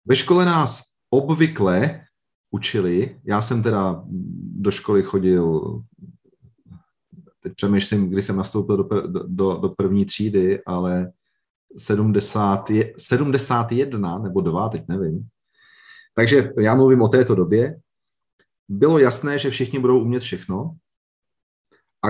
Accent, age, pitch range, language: native, 40-59, 100-135 Hz, Czech